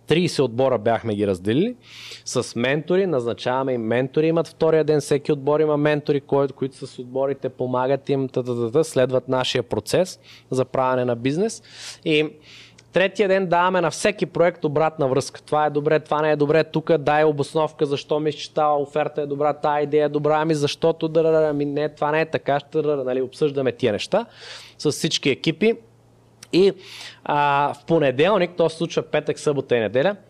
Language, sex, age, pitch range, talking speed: Bulgarian, male, 20-39, 135-185 Hz, 170 wpm